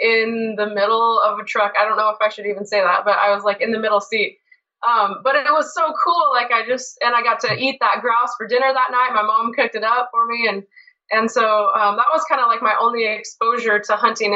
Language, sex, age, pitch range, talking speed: English, female, 20-39, 200-250 Hz, 270 wpm